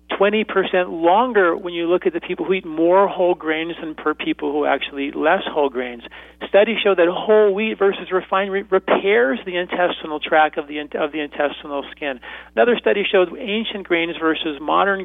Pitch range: 155-200 Hz